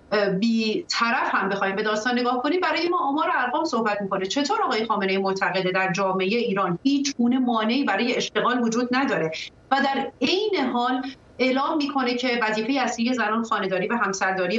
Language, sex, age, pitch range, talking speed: Persian, female, 40-59, 195-250 Hz, 165 wpm